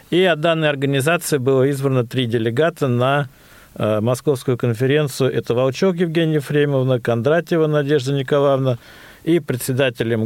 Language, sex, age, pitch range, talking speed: Russian, male, 50-69, 120-150 Hz, 125 wpm